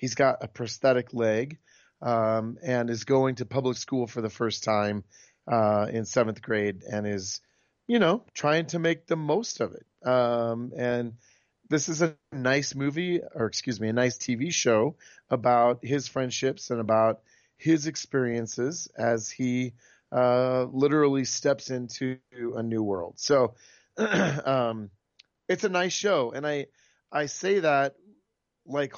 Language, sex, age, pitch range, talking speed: English, male, 30-49, 115-140 Hz, 150 wpm